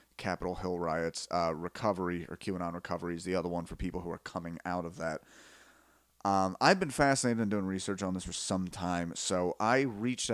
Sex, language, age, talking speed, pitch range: male, English, 30-49, 205 wpm, 90-105 Hz